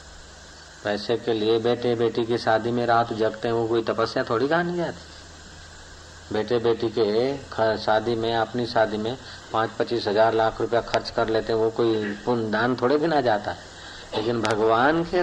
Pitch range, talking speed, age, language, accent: 105-120 Hz, 175 wpm, 50-69, Hindi, native